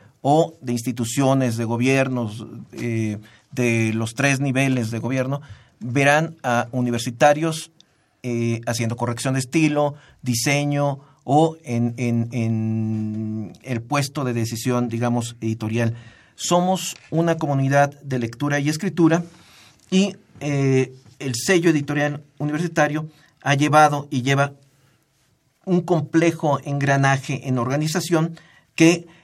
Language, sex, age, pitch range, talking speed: Spanish, male, 50-69, 120-150 Hz, 110 wpm